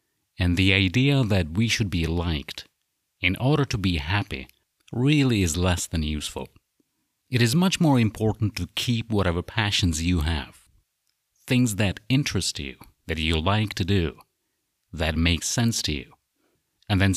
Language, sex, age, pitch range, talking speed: English, male, 50-69, 85-115 Hz, 155 wpm